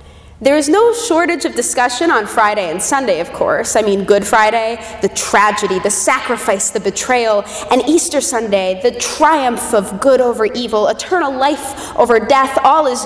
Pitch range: 205-295 Hz